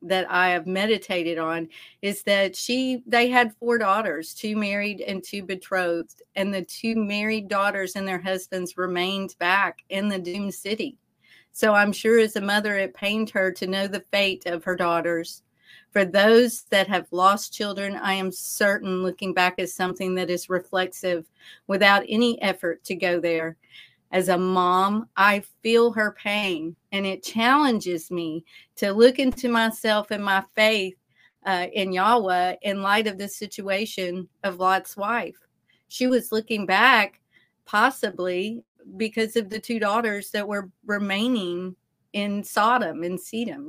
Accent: American